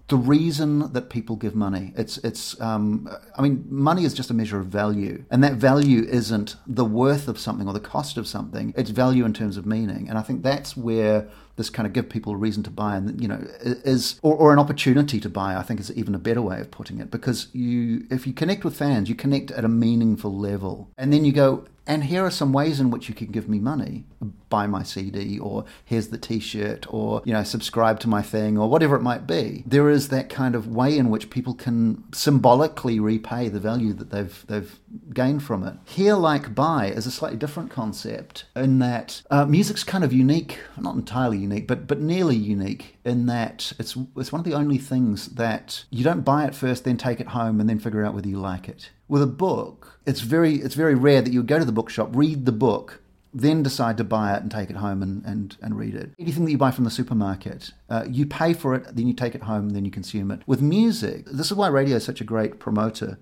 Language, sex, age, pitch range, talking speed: English, male, 40-59, 110-140 Hz, 240 wpm